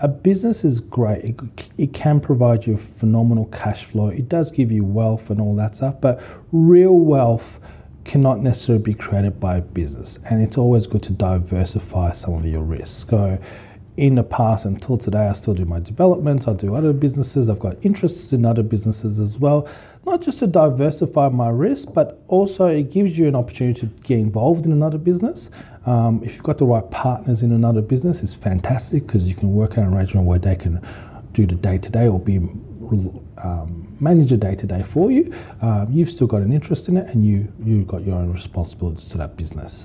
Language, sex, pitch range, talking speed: English, male, 100-135 Hz, 200 wpm